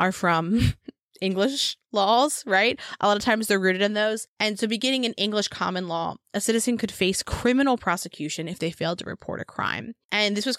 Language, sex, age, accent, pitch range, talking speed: English, female, 20-39, American, 180-230 Hz, 205 wpm